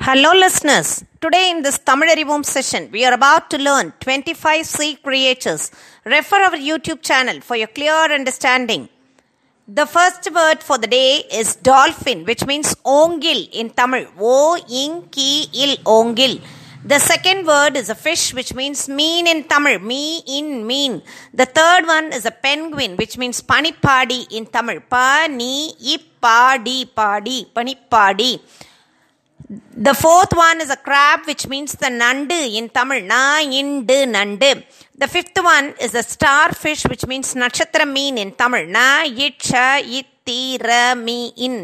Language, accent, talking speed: Tamil, native, 150 wpm